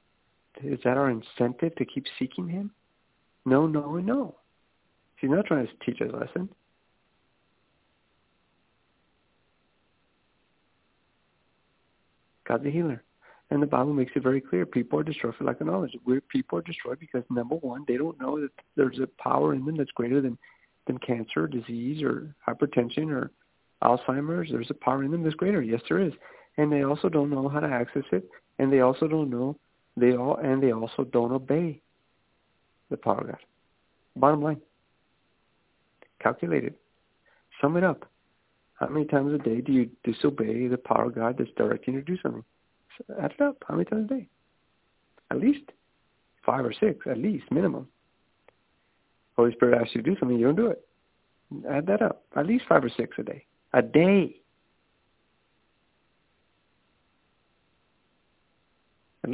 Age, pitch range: 50-69, 125-155 Hz